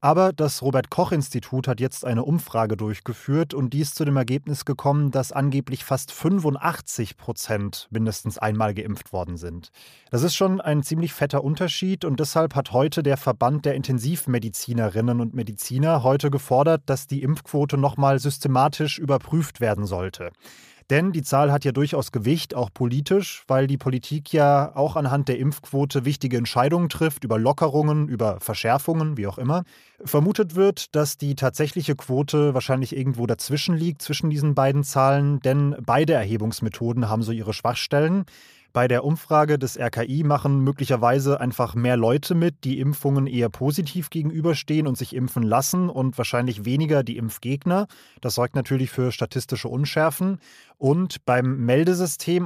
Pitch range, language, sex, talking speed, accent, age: 125-150 Hz, German, male, 155 wpm, German, 20-39